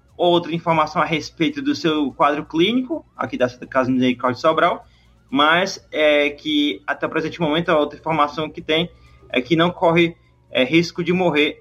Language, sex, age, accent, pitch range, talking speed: Portuguese, male, 20-39, Brazilian, 140-175 Hz, 170 wpm